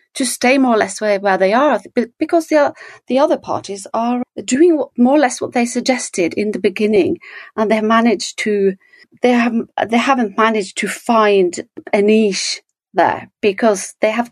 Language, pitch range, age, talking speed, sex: English, 210-310 Hz, 40-59, 180 wpm, female